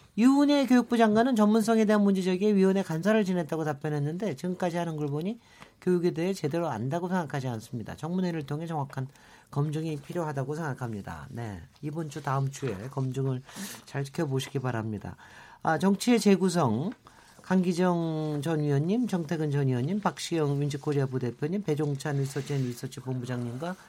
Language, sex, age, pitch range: Korean, male, 40-59, 150-220 Hz